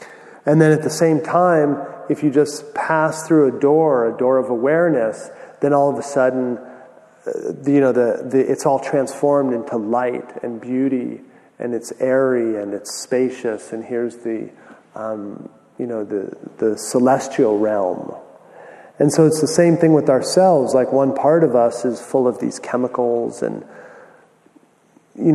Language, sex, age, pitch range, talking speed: English, male, 30-49, 125-145 Hz, 160 wpm